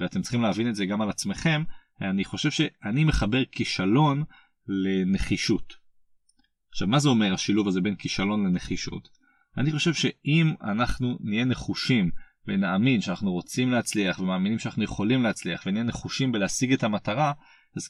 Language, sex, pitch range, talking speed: Hebrew, male, 105-150 Hz, 145 wpm